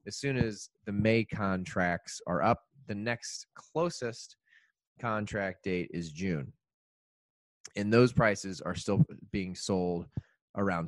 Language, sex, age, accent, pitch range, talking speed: English, male, 20-39, American, 85-110 Hz, 125 wpm